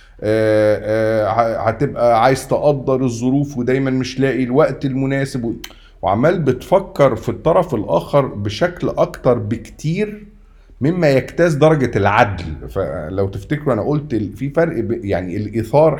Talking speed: 125 wpm